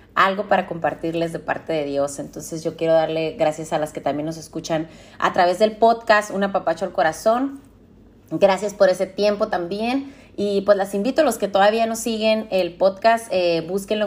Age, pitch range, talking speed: 30-49, 170-215 Hz, 190 wpm